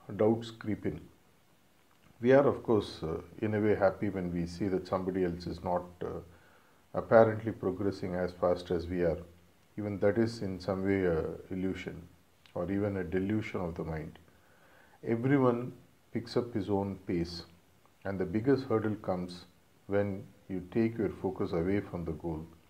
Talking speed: 165 wpm